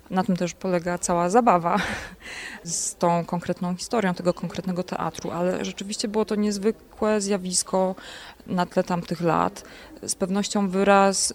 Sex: female